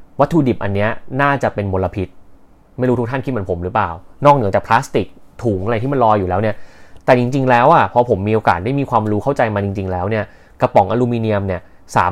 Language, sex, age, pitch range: Thai, male, 30-49, 100-125 Hz